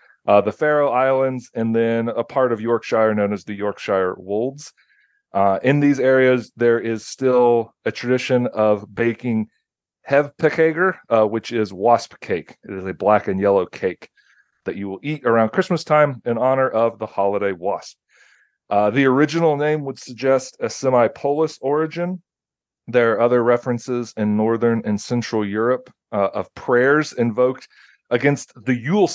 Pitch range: 110-135 Hz